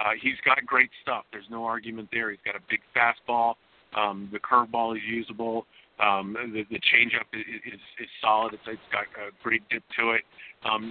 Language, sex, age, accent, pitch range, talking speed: English, male, 40-59, American, 105-115 Hz, 200 wpm